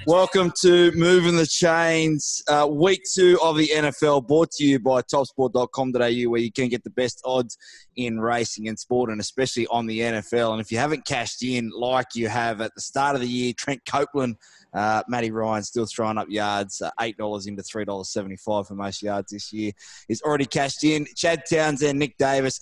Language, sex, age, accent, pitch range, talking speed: English, male, 20-39, Australian, 115-140 Hz, 190 wpm